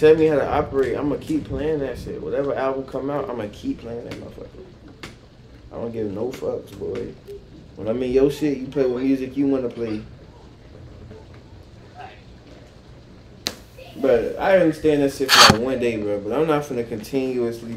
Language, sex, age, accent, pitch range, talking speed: English, male, 20-39, American, 120-160 Hz, 170 wpm